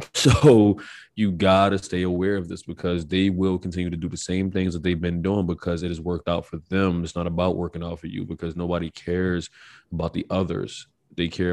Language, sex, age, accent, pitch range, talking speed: English, male, 20-39, American, 85-95 Hz, 225 wpm